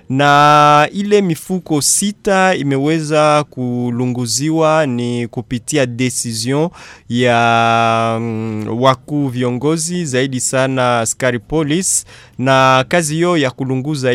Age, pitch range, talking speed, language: 20-39, 125-150 Hz, 85 wpm, Swahili